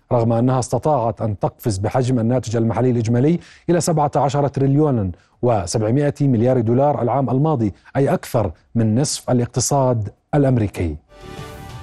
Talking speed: 115 wpm